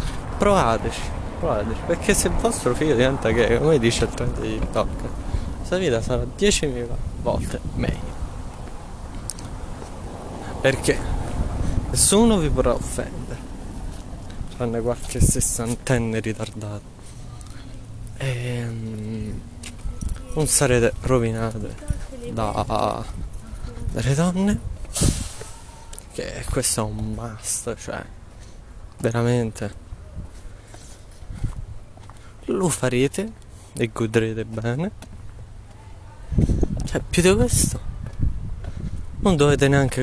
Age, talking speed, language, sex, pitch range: 20-39, 85 wpm, Italian, male, 95-120 Hz